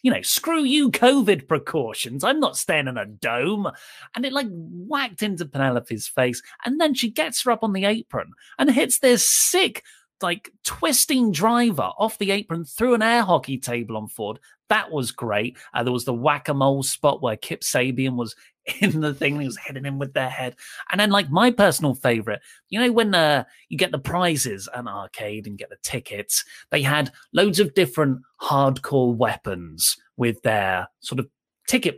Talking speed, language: 190 wpm, English